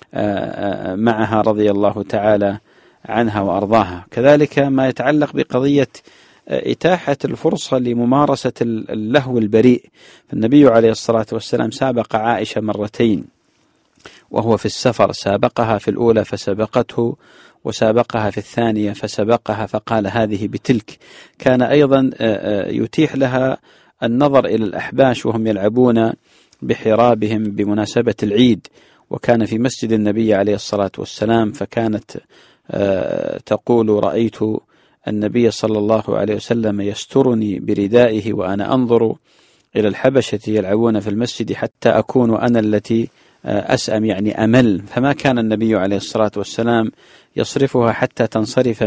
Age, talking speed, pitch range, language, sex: 40-59, 110 wpm, 105-125 Hz, English, male